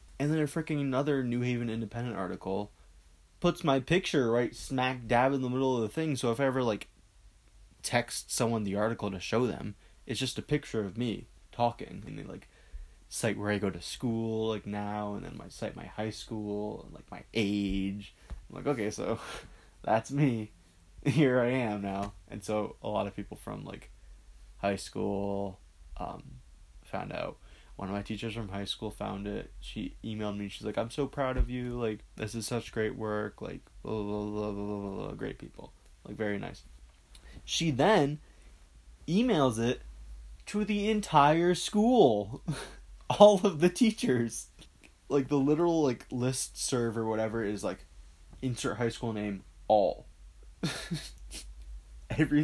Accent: American